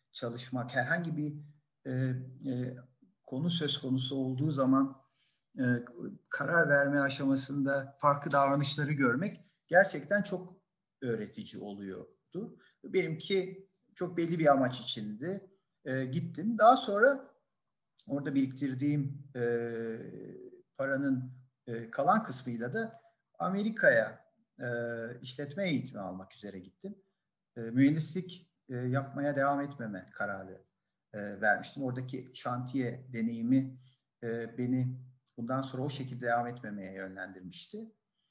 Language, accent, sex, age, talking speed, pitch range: Turkish, native, male, 50-69, 105 wpm, 120-170 Hz